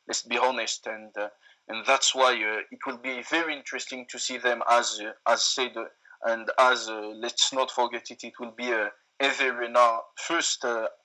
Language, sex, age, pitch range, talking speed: English, male, 20-39, 115-135 Hz, 200 wpm